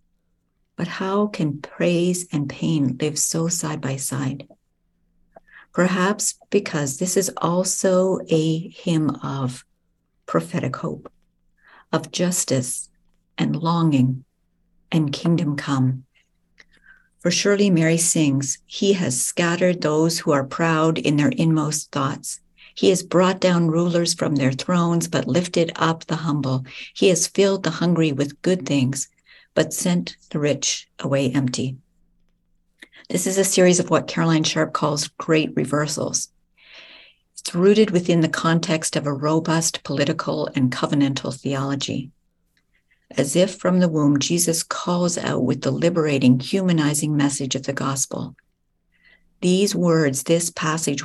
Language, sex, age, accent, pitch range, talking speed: English, female, 50-69, American, 140-175 Hz, 135 wpm